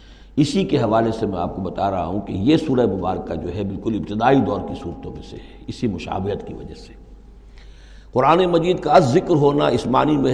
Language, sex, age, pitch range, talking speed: Urdu, male, 60-79, 100-145 Hz, 220 wpm